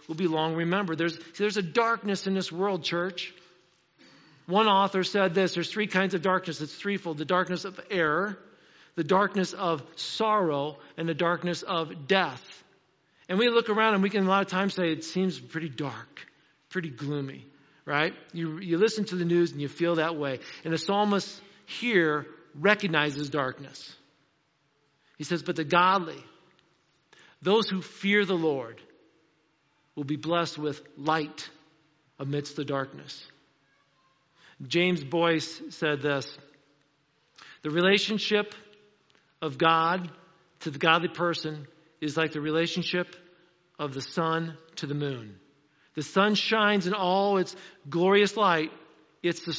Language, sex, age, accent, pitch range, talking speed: English, male, 50-69, American, 150-185 Hz, 150 wpm